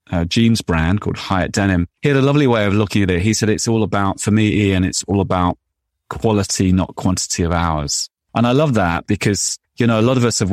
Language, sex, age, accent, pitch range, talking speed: English, male, 30-49, British, 90-105 Hz, 245 wpm